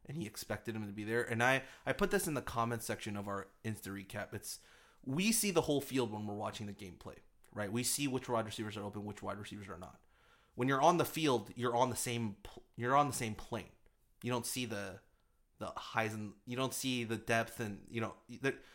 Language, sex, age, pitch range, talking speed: English, male, 30-49, 105-125 Hz, 230 wpm